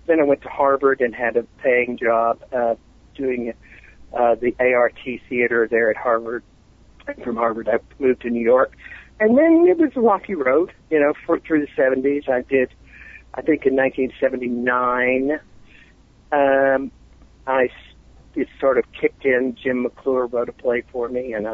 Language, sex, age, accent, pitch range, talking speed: English, male, 60-79, American, 115-135 Hz, 175 wpm